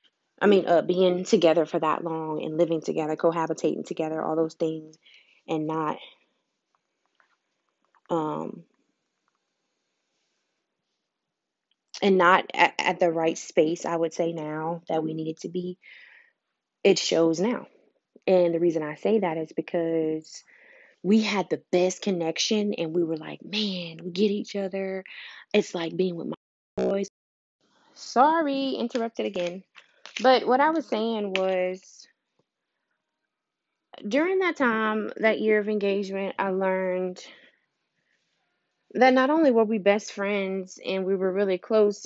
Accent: American